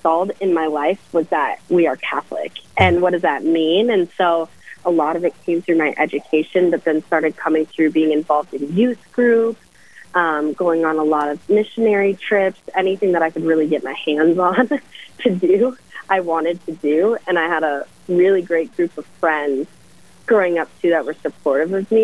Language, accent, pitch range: English, American, 160-200 Hz